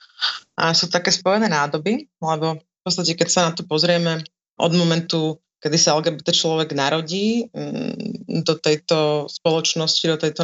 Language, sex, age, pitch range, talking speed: Slovak, female, 30-49, 150-170 Hz, 145 wpm